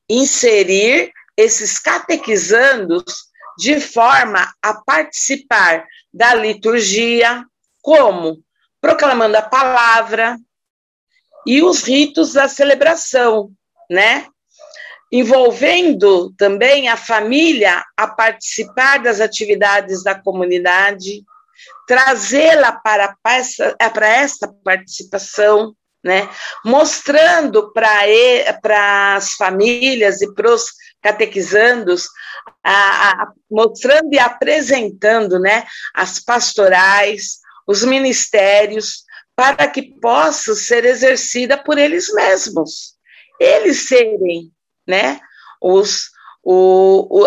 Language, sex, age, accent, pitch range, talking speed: Portuguese, female, 50-69, Brazilian, 200-280 Hz, 85 wpm